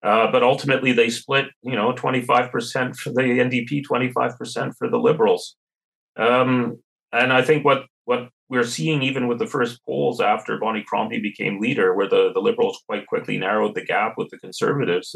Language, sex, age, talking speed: English, male, 30-49, 180 wpm